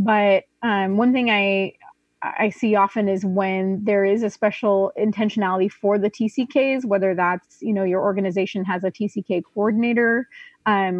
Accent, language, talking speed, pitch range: American, English, 160 wpm, 185-220 Hz